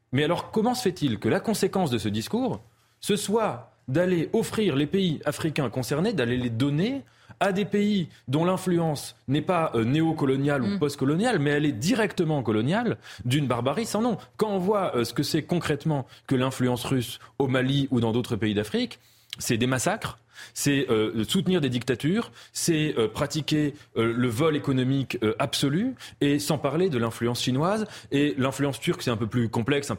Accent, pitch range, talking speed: French, 115-160 Hz, 180 wpm